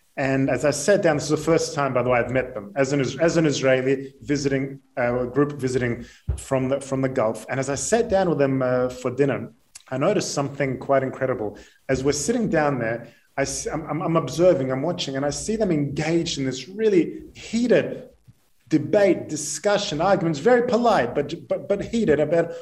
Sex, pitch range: male, 130-170 Hz